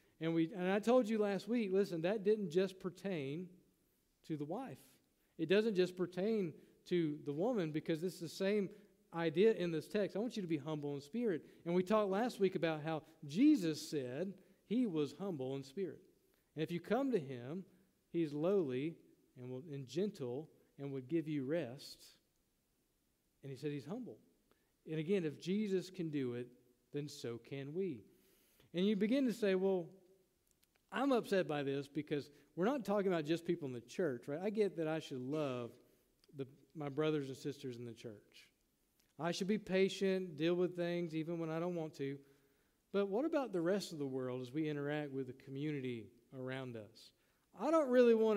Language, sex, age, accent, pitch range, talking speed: English, male, 50-69, American, 145-200 Hz, 190 wpm